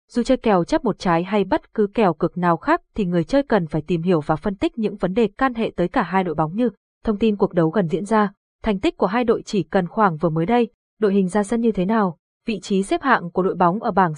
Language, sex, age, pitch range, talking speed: Vietnamese, female, 20-39, 180-230 Hz, 290 wpm